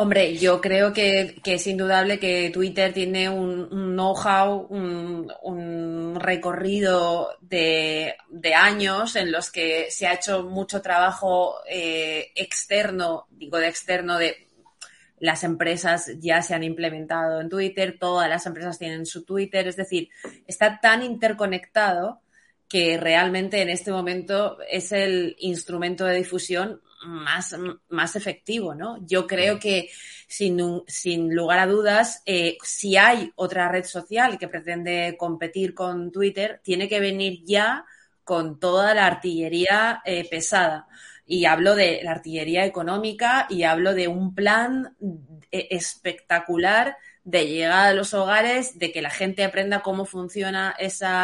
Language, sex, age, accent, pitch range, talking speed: Spanish, female, 20-39, Spanish, 175-195 Hz, 140 wpm